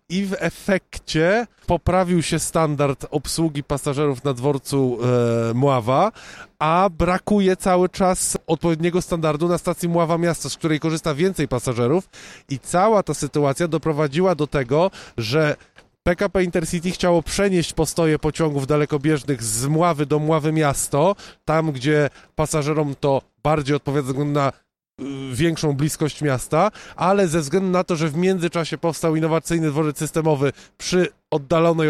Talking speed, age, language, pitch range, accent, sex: 130 wpm, 20-39, Polish, 145-180 Hz, native, male